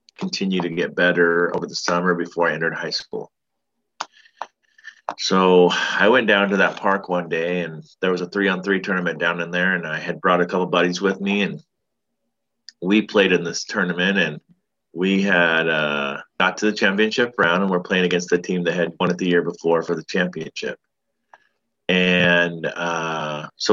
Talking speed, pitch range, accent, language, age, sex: 185 wpm, 85-100 Hz, American, English, 30-49, male